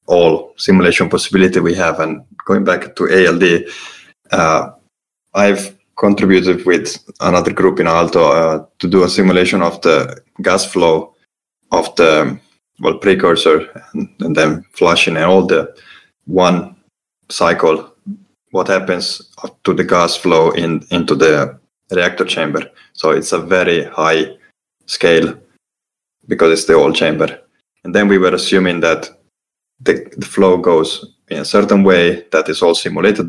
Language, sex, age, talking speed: English, male, 20-39, 140 wpm